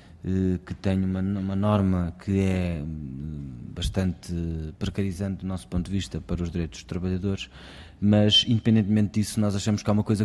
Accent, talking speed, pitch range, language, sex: Portuguese, 165 wpm, 95-135 Hz, Portuguese, male